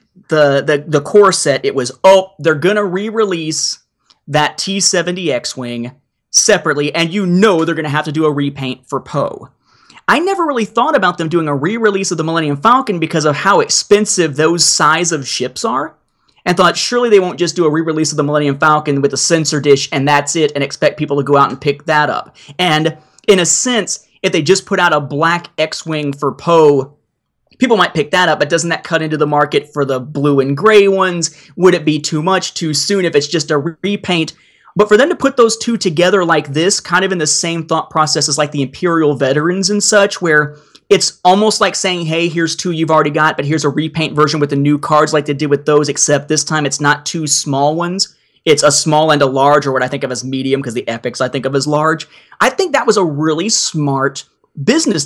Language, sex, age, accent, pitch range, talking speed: English, male, 30-49, American, 145-180 Hz, 230 wpm